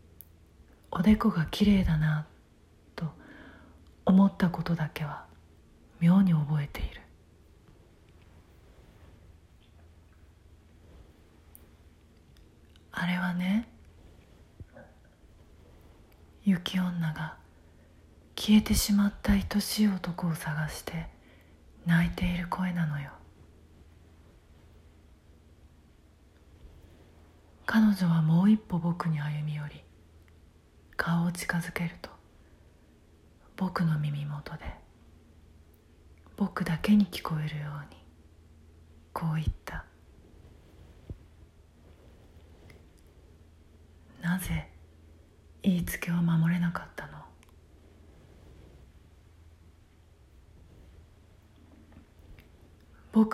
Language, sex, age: Japanese, female, 40-59